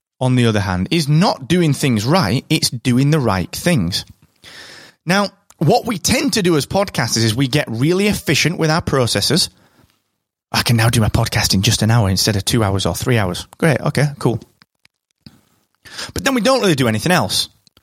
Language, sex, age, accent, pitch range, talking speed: English, male, 30-49, British, 110-160 Hz, 195 wpm